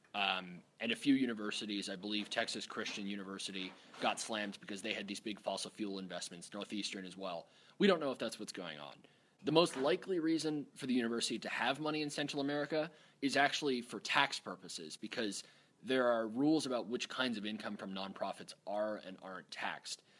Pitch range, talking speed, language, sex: 100-135 Hz, 190 wpm, English, male